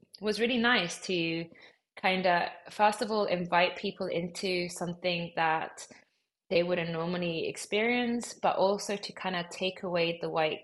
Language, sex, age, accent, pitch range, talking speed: English, female, 20-39, British, 170-200 Hz, 150 wpm